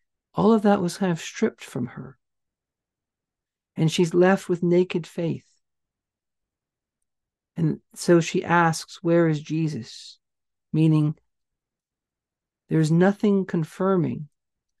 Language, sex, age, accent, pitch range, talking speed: English, male, 50-69, American, 165-200 Hz, 105 wpm